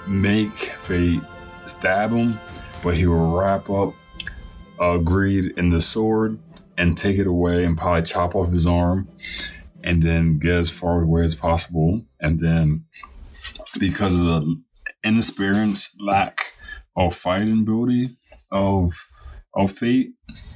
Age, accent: 20-39, American